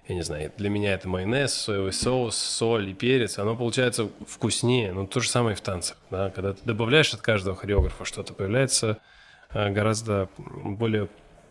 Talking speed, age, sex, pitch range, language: 170 wpm, 20-39, male, 105-125 Hz, Russian